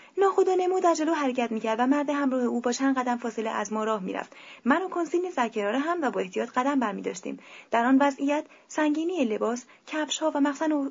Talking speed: 205 wpm